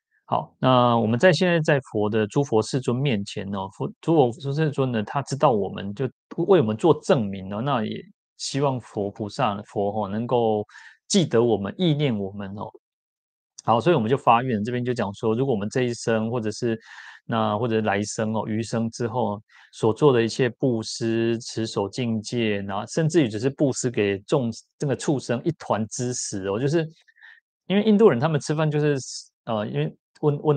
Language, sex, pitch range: Chinese, male, 105-135 Hz